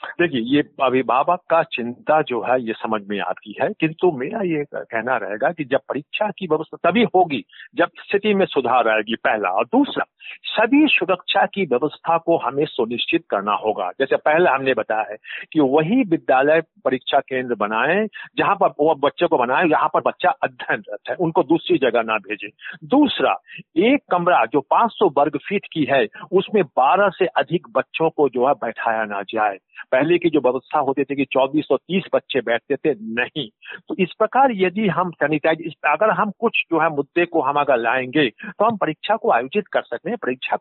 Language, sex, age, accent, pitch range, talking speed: Hindi, male, 50-69, native, 130-200 Hz, 185 wpm